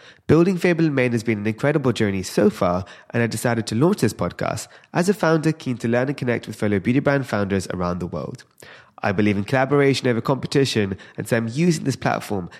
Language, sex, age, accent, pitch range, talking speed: English, male, 20-39, British, 110-145 Hz, 220 wpm